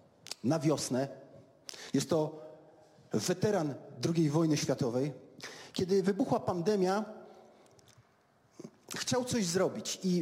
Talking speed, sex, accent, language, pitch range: 90 wpm, male, native, Polish, 170-225 Hz